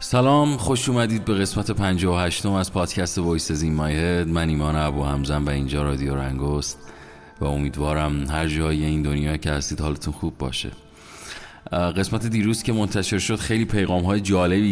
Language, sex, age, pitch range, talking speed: Persian, male, 30-49, 75-90 Hz, 170 wpm